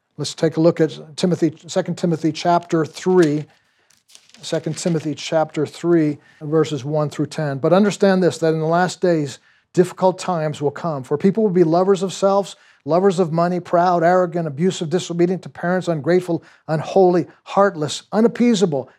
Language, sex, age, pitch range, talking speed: English, male, 50-69, 150-175 Hz, 160 wpm